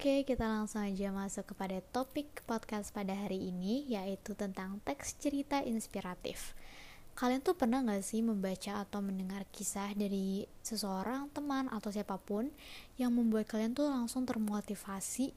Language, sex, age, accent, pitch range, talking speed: Indonesian, female, 20-39, native, 200-240 Hz, 140 wpm